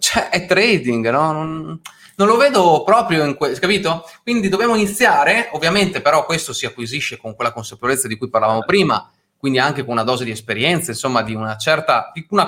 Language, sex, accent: Italian, male, native